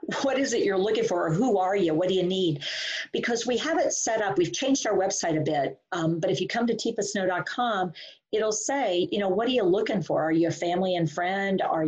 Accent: American